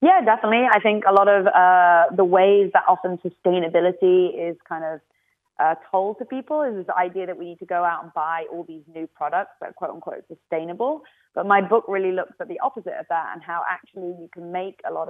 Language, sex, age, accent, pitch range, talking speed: English, female, 20-39, British, 165-190 Hz, 230 wpm